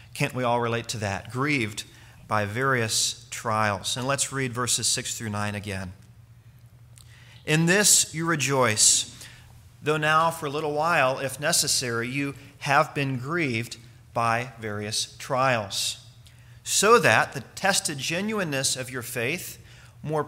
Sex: male